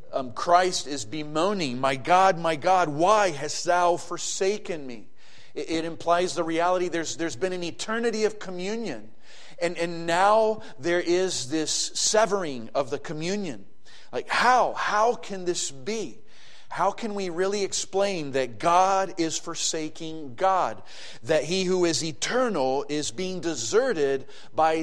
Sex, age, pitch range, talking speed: male, 40-59, 150-190 Hz, 145 wpm